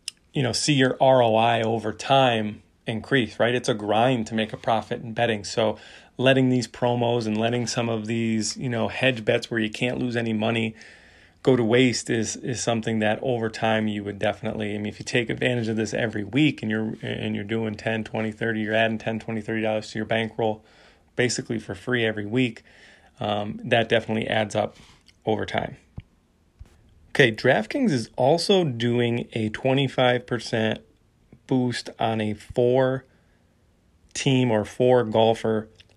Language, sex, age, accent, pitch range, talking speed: English, male, 30-49, American, 110-125 Hz, 170 wpm